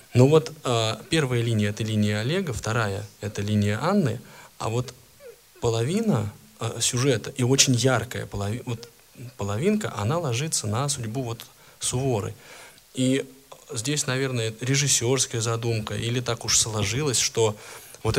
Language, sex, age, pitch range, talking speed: Russian, male, 20-39, 110-135 Hz, 125 wpm